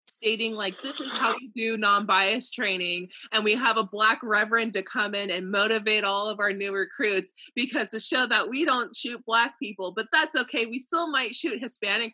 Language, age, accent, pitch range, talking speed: English, 20-39, American, 205-330 Hz, 215 wpm